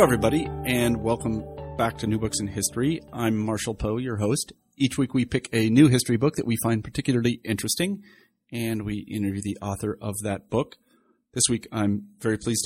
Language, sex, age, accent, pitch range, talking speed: English, male, 40-59, American, 100-125 Hz, 195 wpm